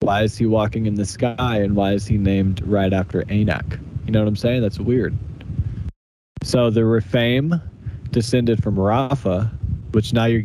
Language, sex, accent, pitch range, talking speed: English, male, American, 100-115 Hz, 180 wpm